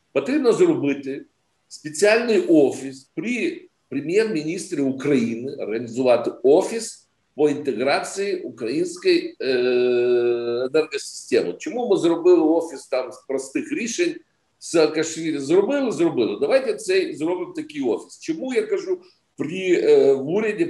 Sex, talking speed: male, 110 wpm